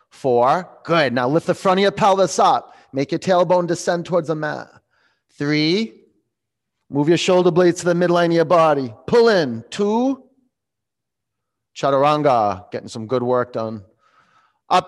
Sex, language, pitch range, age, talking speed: male, English, 120-155 Hz, 30-49, 155 wpm